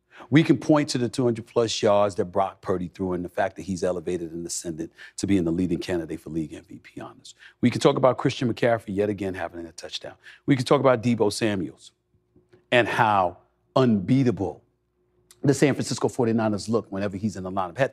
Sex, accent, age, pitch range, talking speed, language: male, American, 40-59, 90-125 Hz, 200 wpm, English